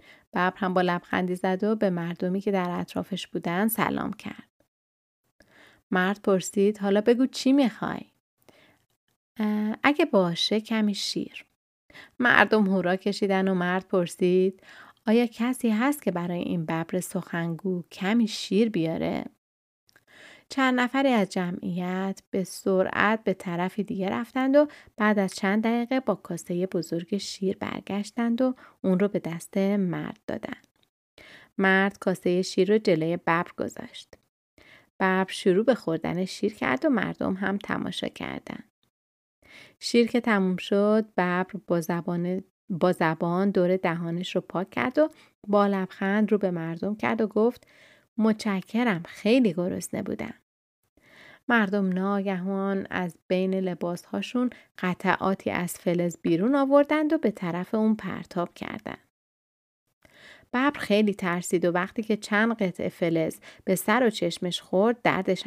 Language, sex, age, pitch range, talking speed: Persian, female, 30-49, 180-220 Hz, 130 wpm